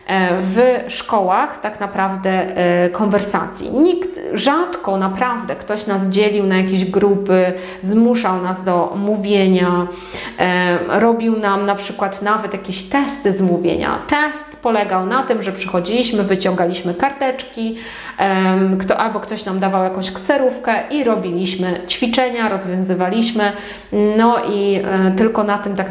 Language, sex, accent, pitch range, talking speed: Polish, female, native, 185-230 Hz, 120 wpm